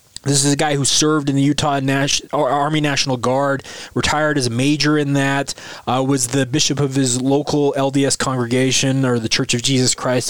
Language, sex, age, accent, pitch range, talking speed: English, male, 20-39, American, 125-150 Hz, 190 wpm